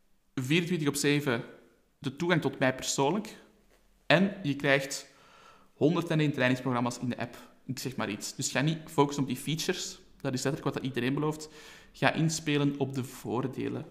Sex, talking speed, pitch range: male, 165 wpm, 125-145 Hz